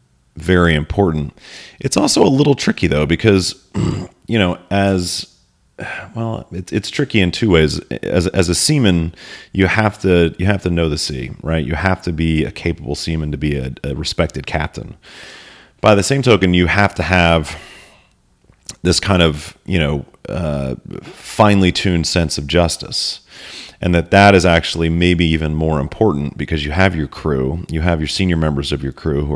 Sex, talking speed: male, 180 wpm